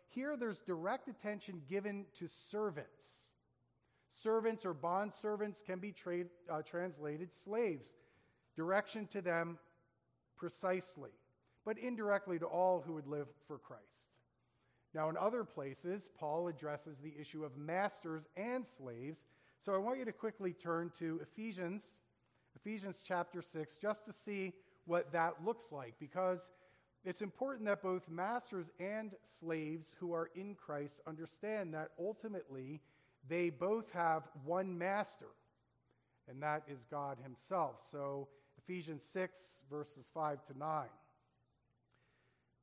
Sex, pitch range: male, 150-195 Hz